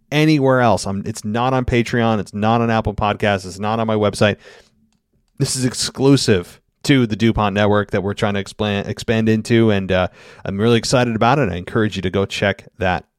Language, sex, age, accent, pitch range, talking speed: English, male, 30-49, American, 100-125 Hz, 205 wpm